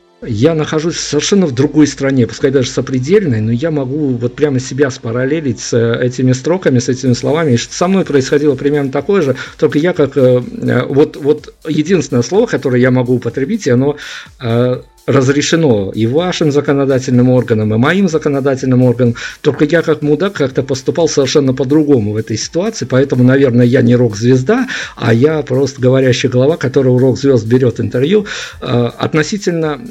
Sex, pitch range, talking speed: male, 120-145 Hz, 150 wpm